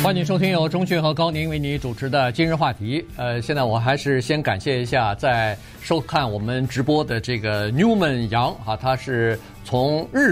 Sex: male